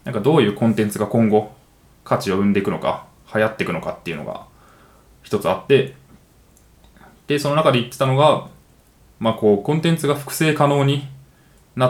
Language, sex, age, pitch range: Japanese, male, 20-39, 105-145 Hz